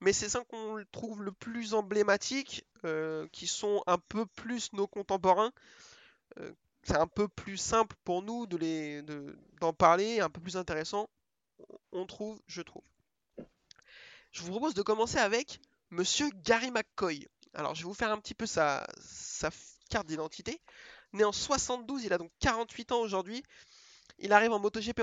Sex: male